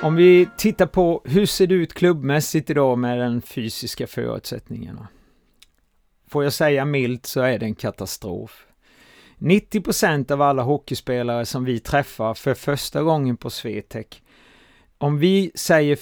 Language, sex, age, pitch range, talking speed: Swedish, male, 30-49, 125-160 Hz, 140 wpm